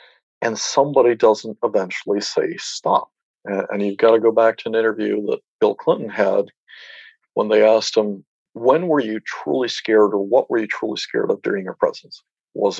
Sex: male